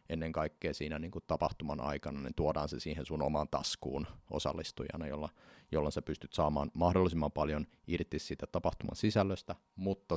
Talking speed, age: 155 wpm, 30-49